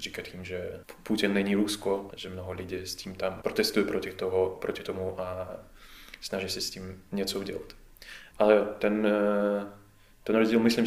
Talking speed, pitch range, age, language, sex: 155 wpm, 95-105 Hz, 20-39, Czech, male